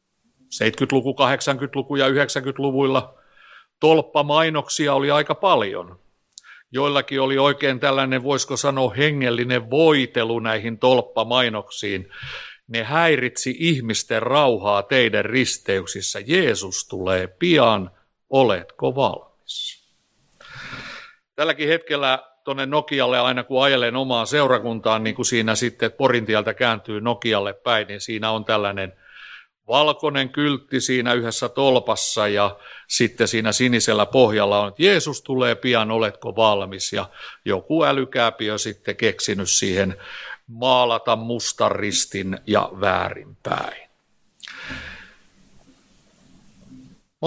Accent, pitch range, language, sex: native, 110-135 Hz, Finnish, male